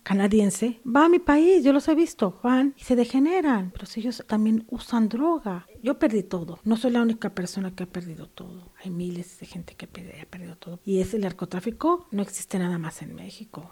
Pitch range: 195-255 Hz